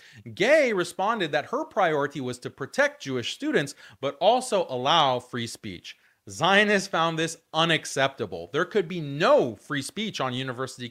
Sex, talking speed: male, 150 wpm